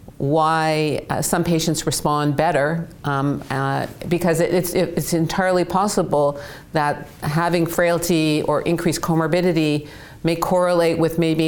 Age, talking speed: 50-69, 130 wpm